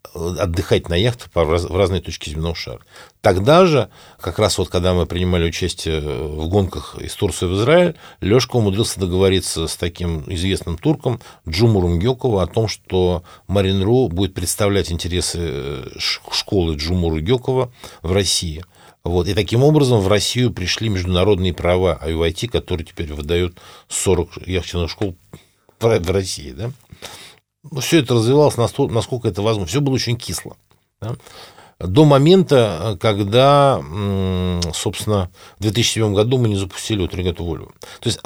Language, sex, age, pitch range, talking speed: Russian, male, 60-79, 90-125 Hz, 140 wpm